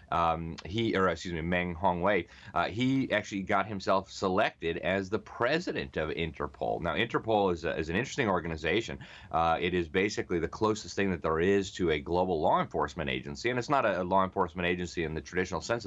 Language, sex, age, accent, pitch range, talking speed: English, male, 30-49, American, 80-100 Hz, 195 wpm